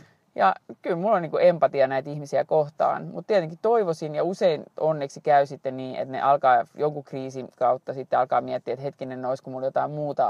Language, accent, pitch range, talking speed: Finnish, native, 135-185 Hz, 190 wpm